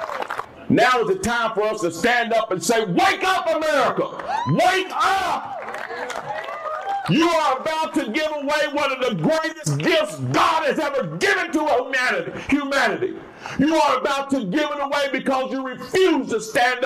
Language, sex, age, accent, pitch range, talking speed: English, male, 50-69, American, 225-295 Hz, 160 wpm